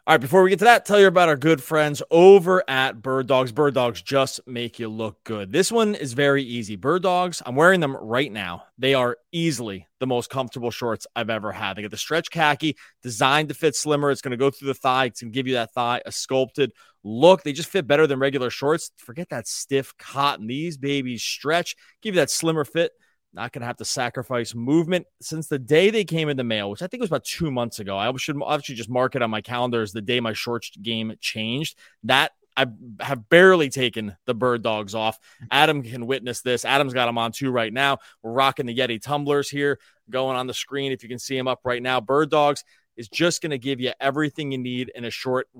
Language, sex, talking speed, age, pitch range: English, male, 240 wpm, 30-49, 120-150 Hz